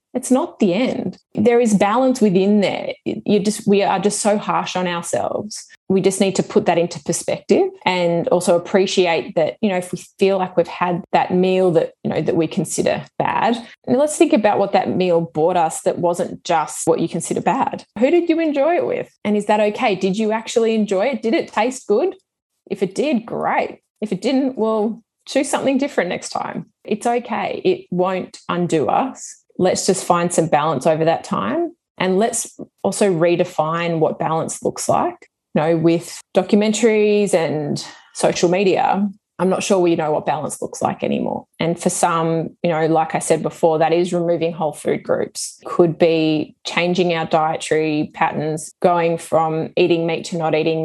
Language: English